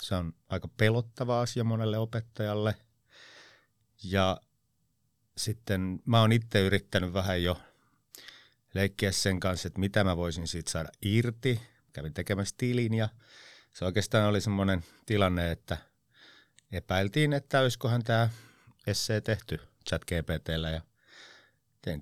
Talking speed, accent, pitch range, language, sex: 125 wpm, native, 90-110 Hz, Finnish, male